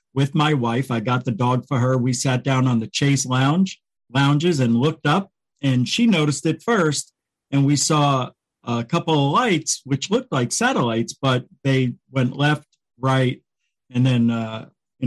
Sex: male